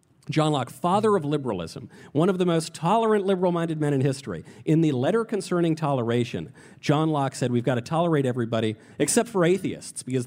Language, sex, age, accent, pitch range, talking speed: English, male, 40-59, American, 120-170 Hz, 180 wpm